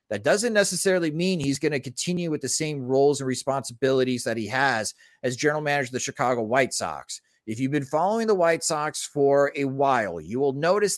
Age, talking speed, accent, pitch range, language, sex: 30-49, 210 wpm, American, 125-165 Hz, English, male